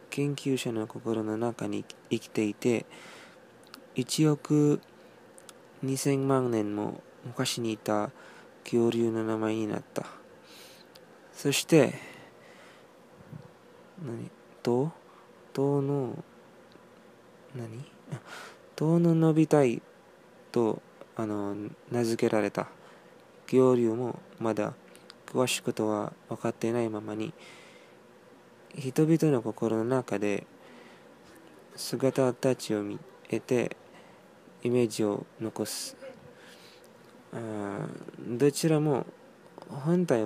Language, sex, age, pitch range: Japanese, male, 20-39, 110-140 Hz